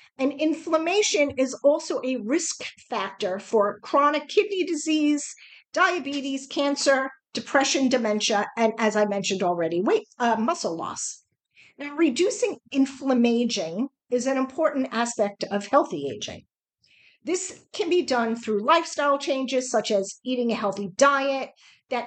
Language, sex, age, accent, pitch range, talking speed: English, female, 50-69, American, 225-295 Hz, 130 wpm